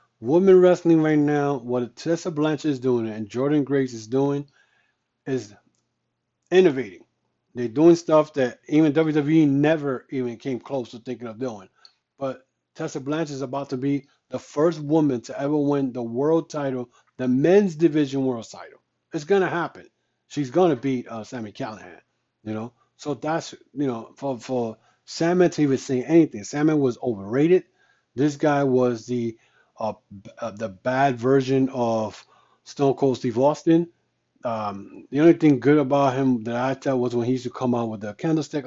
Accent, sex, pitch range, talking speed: American, male, 120-150 Hz, 170 wpm